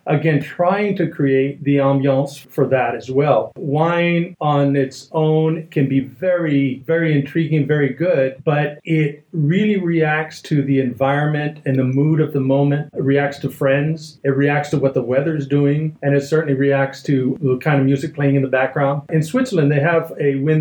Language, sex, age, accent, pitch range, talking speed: English, male, 50-69, American, 140-160 Hz, 190 wpm